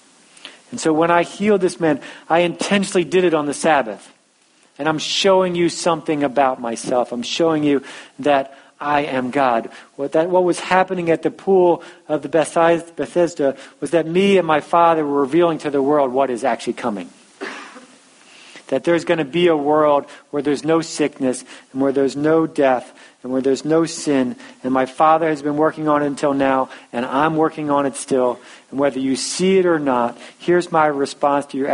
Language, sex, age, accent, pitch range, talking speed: English, male, 40-59, American, 135-170 Hz, 190 wpm